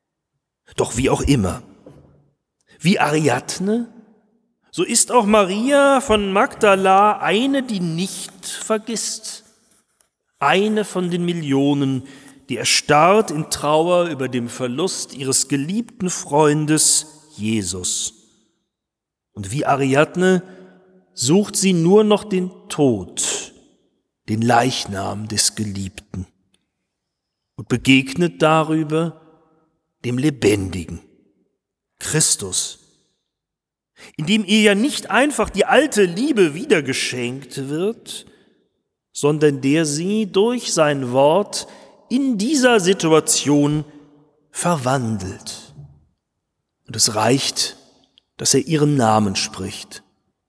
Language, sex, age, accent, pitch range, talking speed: German, male, 40-59, German, 125-200 Hz, 95 wpm